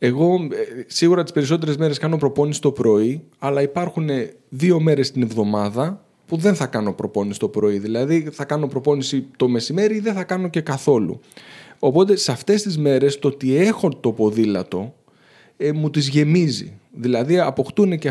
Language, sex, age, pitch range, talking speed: Greek, male, 30-49, 130-170 Hz, 170 wpm